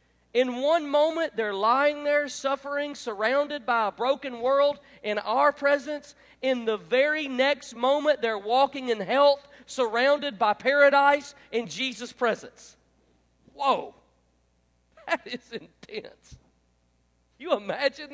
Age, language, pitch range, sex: 40-59, English, 180-285 Hz, male